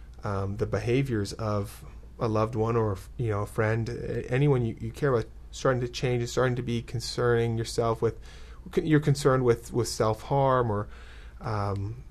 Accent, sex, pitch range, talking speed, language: American, male, 105-125 Hz, 165 wpm, English